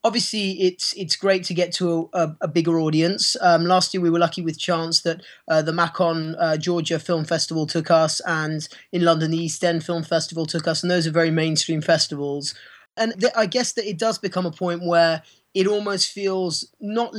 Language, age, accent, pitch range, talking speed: English, 20-39, British, 165-190 Hz, 210 wpm